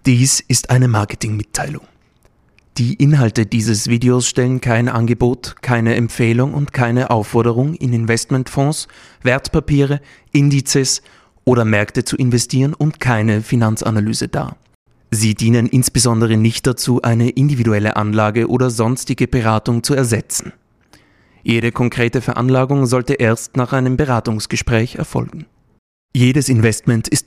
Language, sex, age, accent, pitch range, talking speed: German, male, 30-49, German, 115-130 Hz, 115 wpm